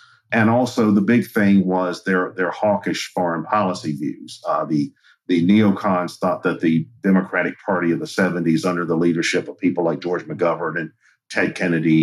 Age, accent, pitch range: 50-69, American, 90-105 Hz